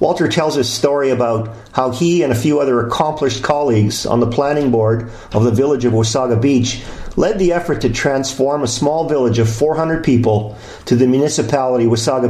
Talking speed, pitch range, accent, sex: 185 wpm, 115-150 Hz, American, male